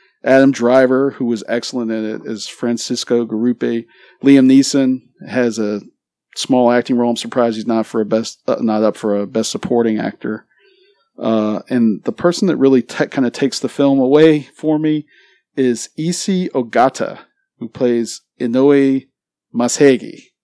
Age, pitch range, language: 40-59, 110-135 Hz, English